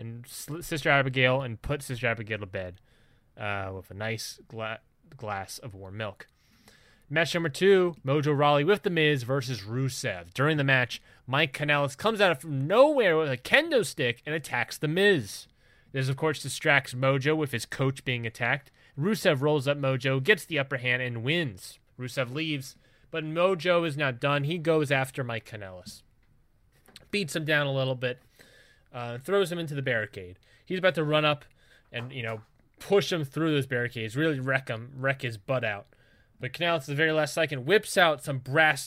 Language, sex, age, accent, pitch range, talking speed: English, male, 20-39, American, 120-155 Hz, 185 wpm